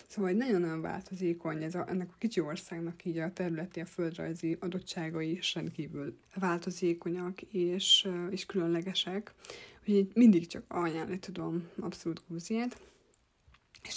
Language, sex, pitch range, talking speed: Hungarian, female, 170-190 Hz, 120 wpm